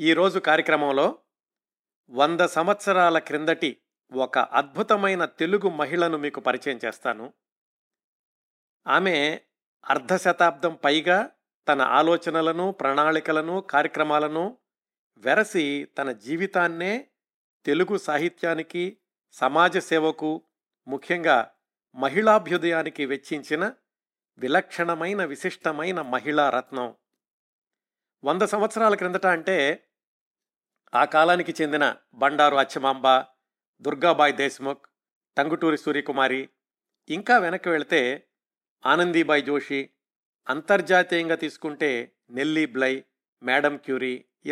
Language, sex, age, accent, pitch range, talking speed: Telugu, male, 50-69, native, 145-185 Hz, 75 wpm